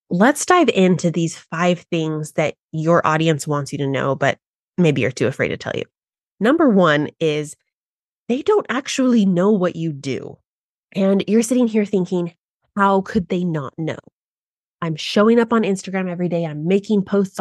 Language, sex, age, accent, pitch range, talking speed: English, female, 20-39, American, 160-210 Hz, 175 wpm